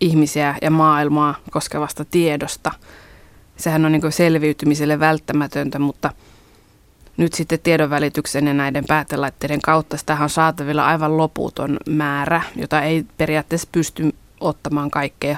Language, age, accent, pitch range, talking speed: Finnish, 20-39, native, 145-160 Hz, 115 wpm